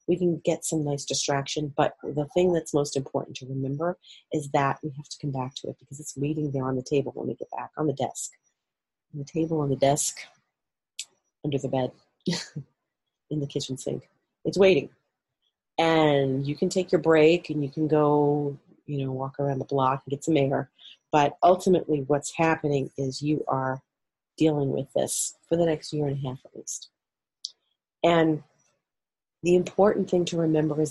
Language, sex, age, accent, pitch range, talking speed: English, female, 40-59, American, 140-165 Hz, 190 wpm